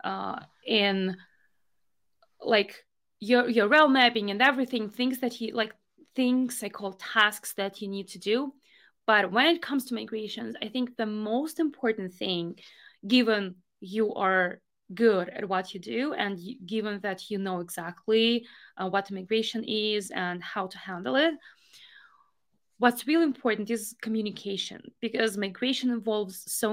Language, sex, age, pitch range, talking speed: English, female, 20-39, 195-240 Hz, 150 wpm